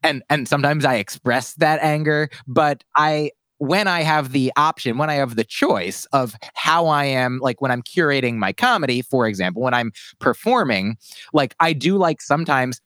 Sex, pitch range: male, 125-155 Hz